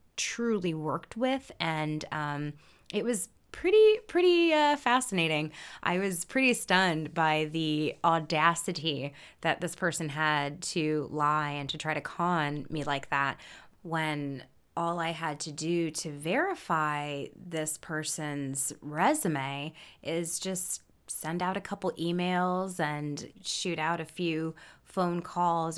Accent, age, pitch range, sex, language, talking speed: American, 20-39, 155-195 Hz, female, English, 135 wpm